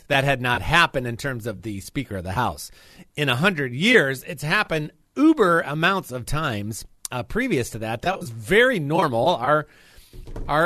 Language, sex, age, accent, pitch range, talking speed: English, male, 40-59, American, 115-175 Hz, 175 wpm